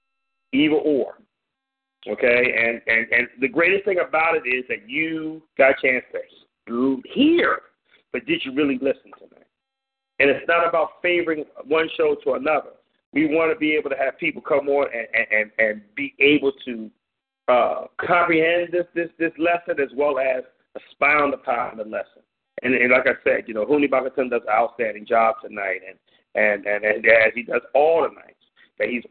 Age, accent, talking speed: 40-59, American, 190 wpm